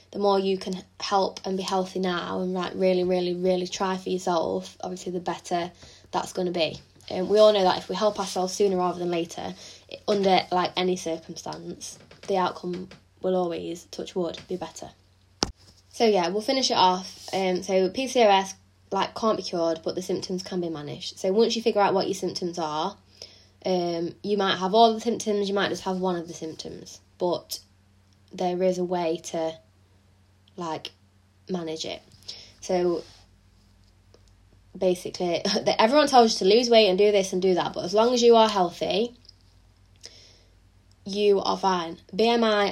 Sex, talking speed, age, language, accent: female, 175 wpm, 10-29, English, British